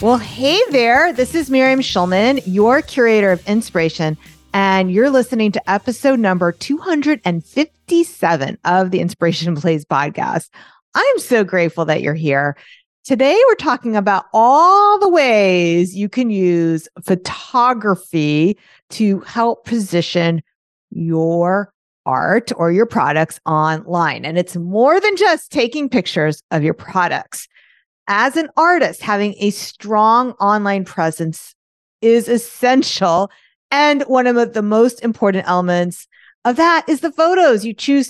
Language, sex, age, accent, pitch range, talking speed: English, female, 40-59, American, 180-265 Hz, 130 wpm